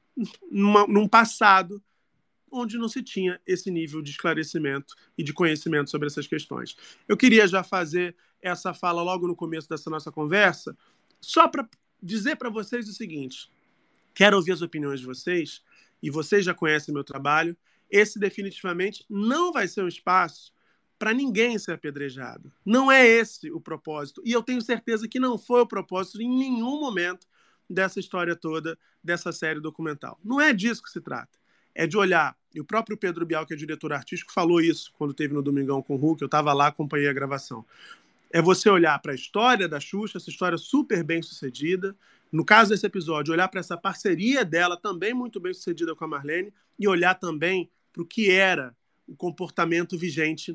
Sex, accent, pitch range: male, Brazilian, 160-210 Hz